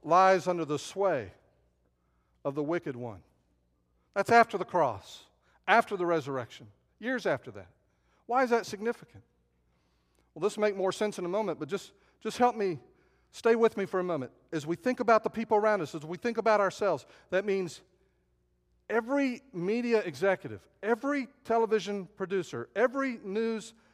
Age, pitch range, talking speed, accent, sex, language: 50-69, 160-255 Hz, 165 wpm, American, male, English